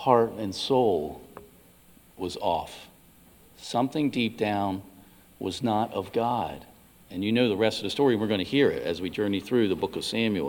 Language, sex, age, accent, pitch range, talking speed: English, male, 50-69, American, 95-145 Hz, 185 wpm